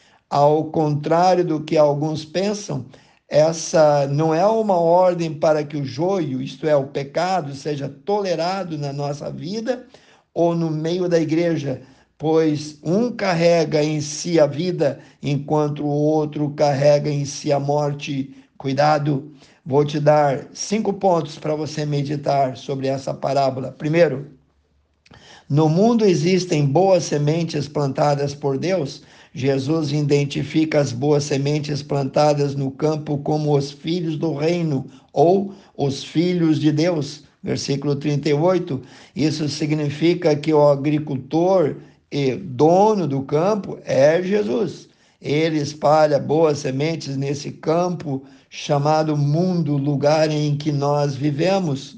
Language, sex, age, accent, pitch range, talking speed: Portuguese, male, 50-69, Brazilian, 140-165 Hz, 125 wpm